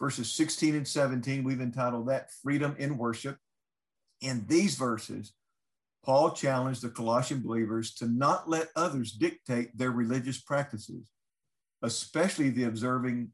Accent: American